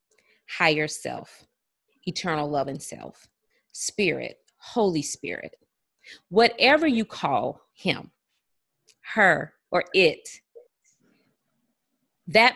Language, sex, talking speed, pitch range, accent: English, female, 80 wpm, 180-260 Hz, American